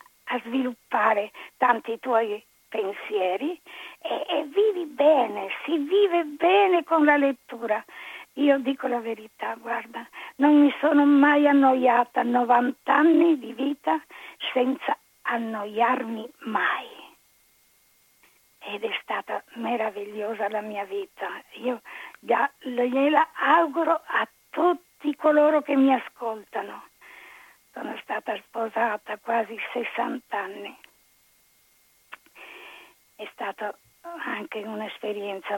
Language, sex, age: Italian, female, 50-69